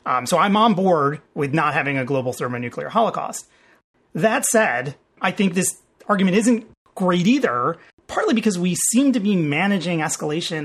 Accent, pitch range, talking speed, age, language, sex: American, 130-200 Hz, 165 wpm, 30-49, English, male